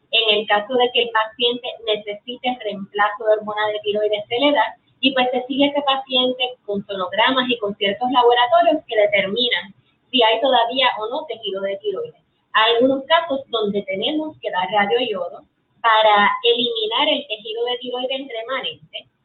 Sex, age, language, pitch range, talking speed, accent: female, 20-39, Spanish, 210-255 Hz, 170 wpm, American